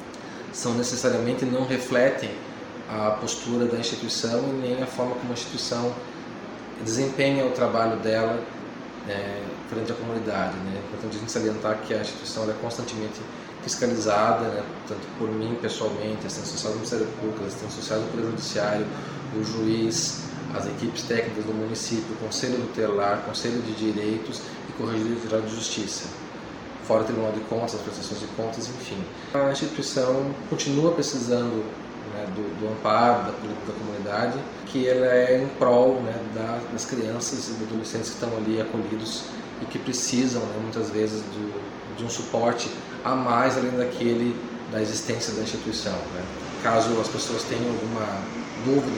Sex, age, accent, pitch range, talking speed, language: male, 20-39, Brazilian, 110-120 Hz, 160 wpm, Portuguese